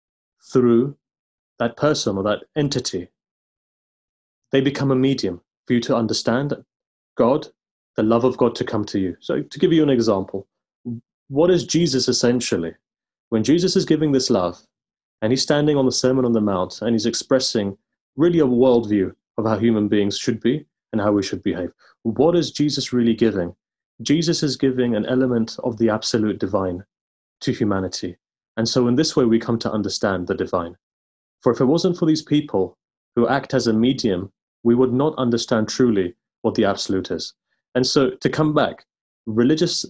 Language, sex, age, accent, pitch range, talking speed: English, male, 30-49, British, 110-140 Hz, 180 wpm